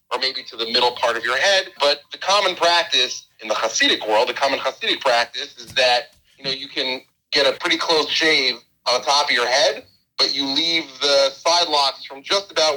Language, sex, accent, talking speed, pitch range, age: English, male, American, 220 wpm, 120-155 Hz, 40-59